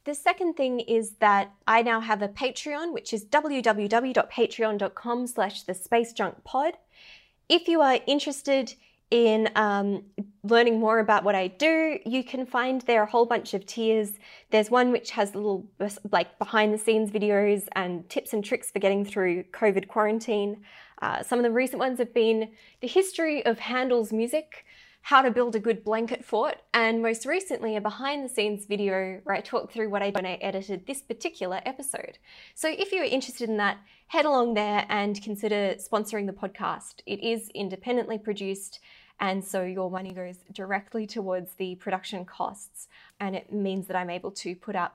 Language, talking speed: English, 180 wpm